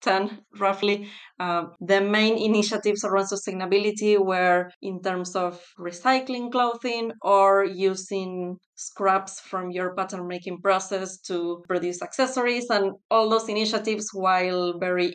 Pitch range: 180-200 Hz